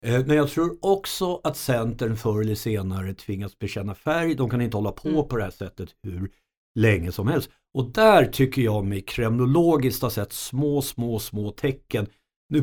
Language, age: Swedish, 50-69